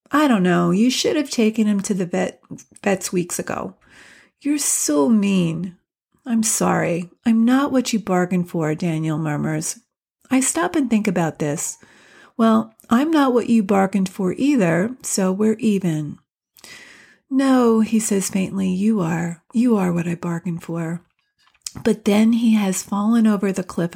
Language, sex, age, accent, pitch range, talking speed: English, female, 40-59, American, 185-240 Hz, 160 wpm